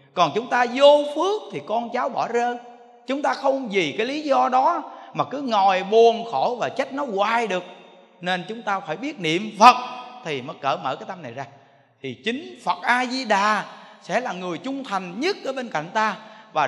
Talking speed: 210 wpm